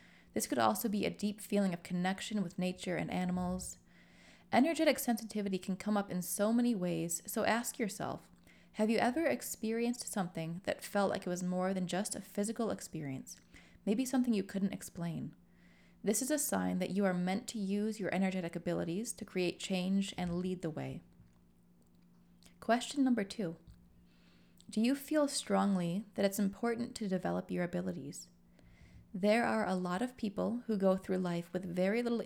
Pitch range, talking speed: 175-225 Hz, 175 wpm